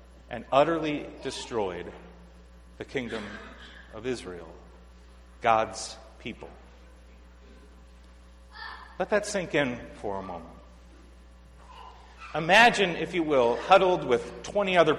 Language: English